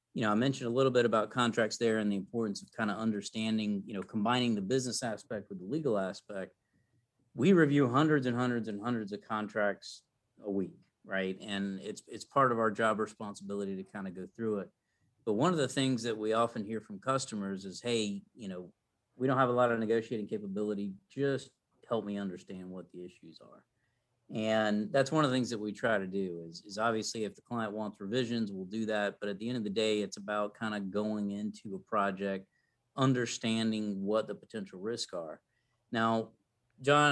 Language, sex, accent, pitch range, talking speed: English, male, American, 100-120 Hz, 210 wpm